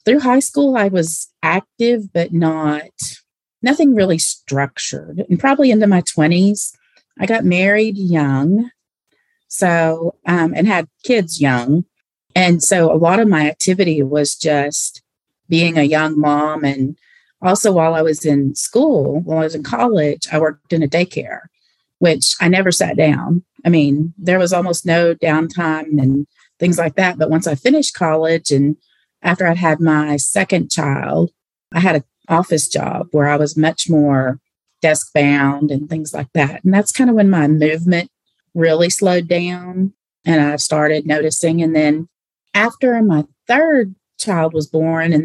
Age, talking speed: 30-49, 165 wpm